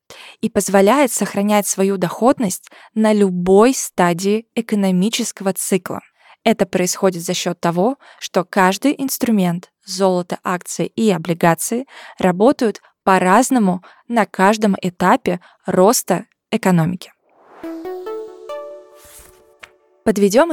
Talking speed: 90 wpm